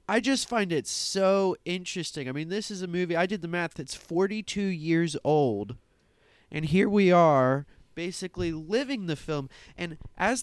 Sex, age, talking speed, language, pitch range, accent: male, 20-39, 175 wpm, English, 125-195 Hz, American